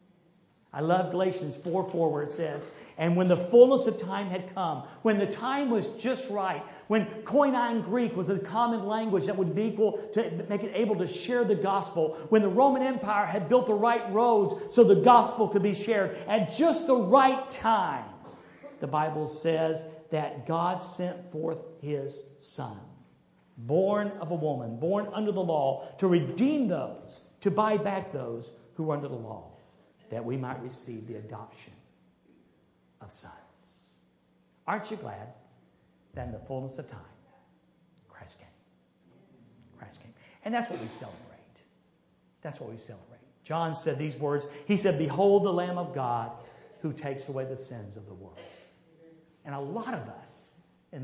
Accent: American